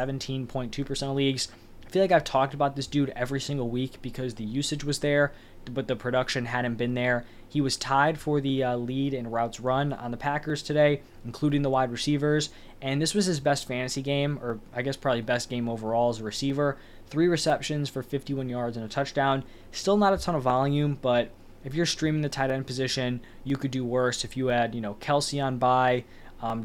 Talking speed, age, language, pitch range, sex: 210 wpm, 20-39, English, 120-145 Hz, male